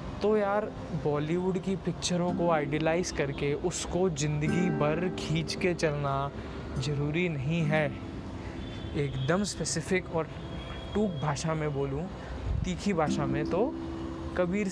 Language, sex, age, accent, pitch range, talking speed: Hindi, male, 20-39, native, 145-200 Hz, 120 wpm